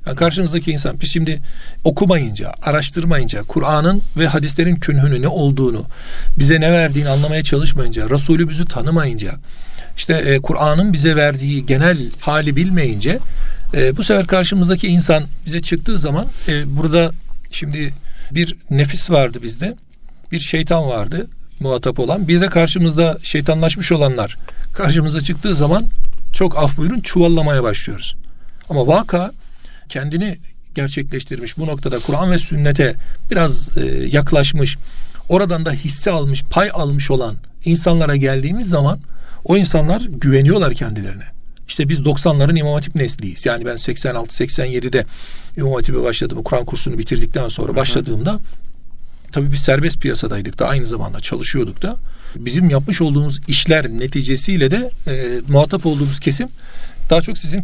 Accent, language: native, Turkish